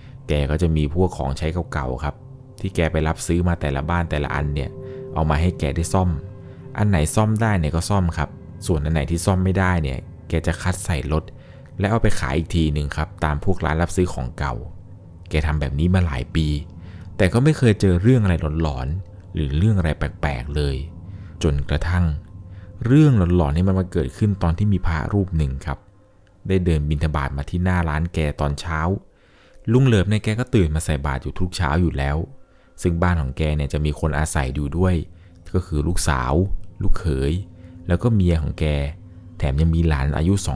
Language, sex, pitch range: Thai, male, 75-95 Hz